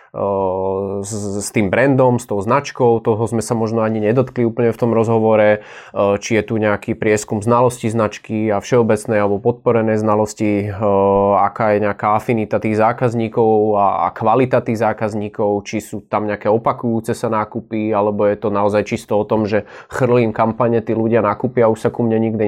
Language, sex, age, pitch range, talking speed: Slovak, male, 20-39, 110-120 Hz, 170 wpm